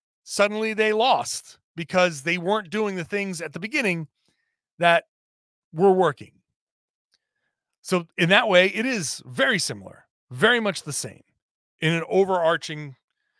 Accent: American